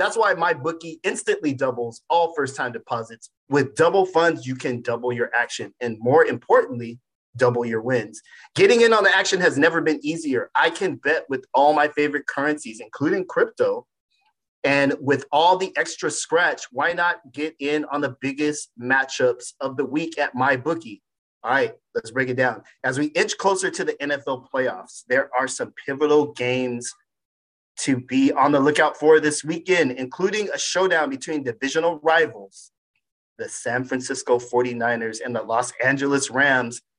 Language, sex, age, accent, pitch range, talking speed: English, male, 30-49, American, 130-165 Hz, 170 wpm